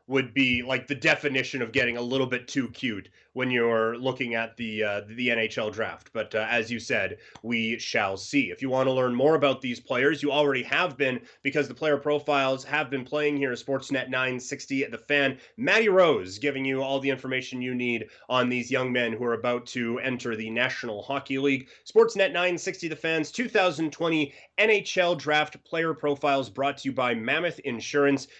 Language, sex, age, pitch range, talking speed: English, male, 30-49, 130-160 Hz, 195 wpm